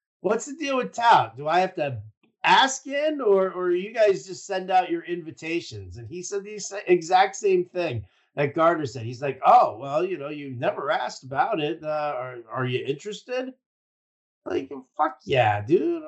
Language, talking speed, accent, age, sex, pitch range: English, 185 wpm, American, 50-69, male, 110-175 Hz